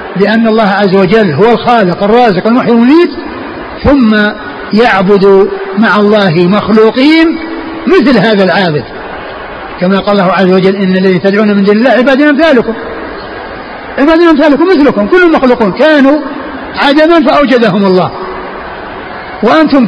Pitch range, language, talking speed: 205-275 Hz, Arabic, 120 wpm